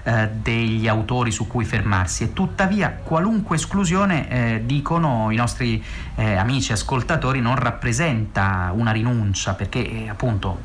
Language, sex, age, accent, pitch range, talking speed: Italian, male, 30-49, native, 110-130 Hz, 130 wpm